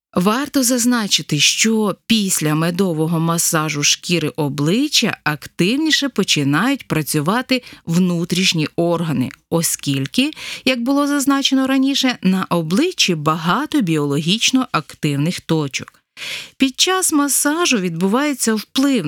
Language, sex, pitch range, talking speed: Ukrainian, female, 160-260 Hz, 90 wpm